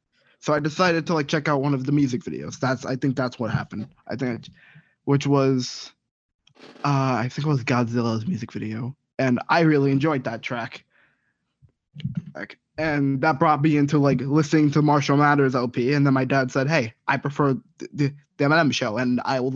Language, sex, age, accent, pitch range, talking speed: English, male, 20-39, American, 130-150 Hz, 195 wpm